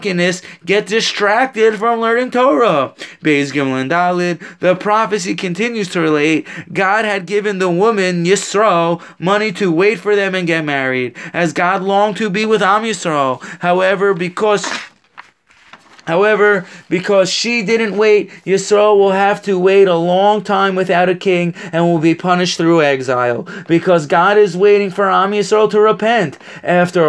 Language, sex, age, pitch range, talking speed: English, male, 20-39, 175-210 Hz, 145 wpm